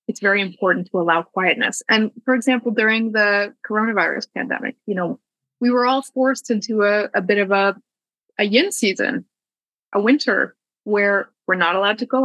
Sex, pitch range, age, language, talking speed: female, 200-235 Hz, 20-39, English, 175 wpm